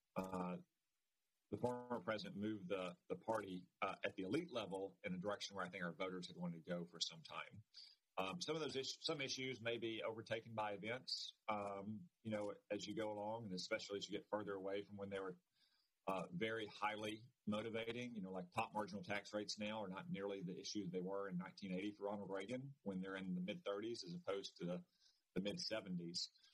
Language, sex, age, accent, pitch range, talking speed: English, male, 40-59, American, 90-110 Hz, 215 wpm